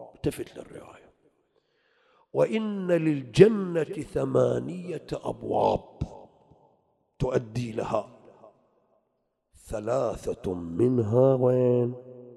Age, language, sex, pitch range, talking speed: 50-69, English, male, 125-205 Hz, 55 wpm